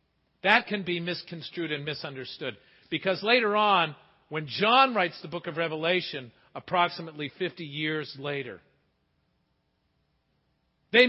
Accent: American